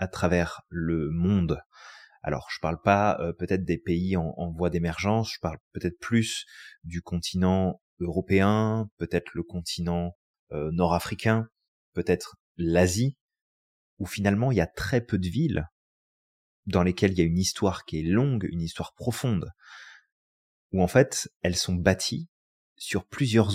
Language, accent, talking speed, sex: French, French, 155 wpm, male